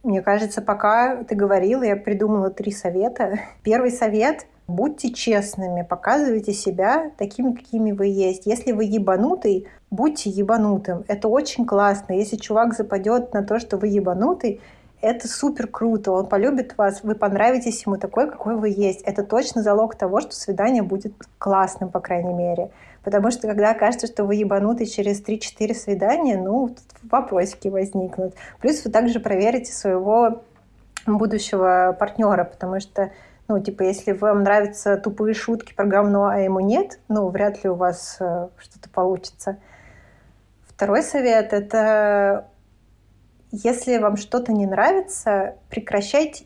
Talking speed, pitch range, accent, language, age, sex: 145 wpm, 195-230 Hz, native, Russian, 20-39, female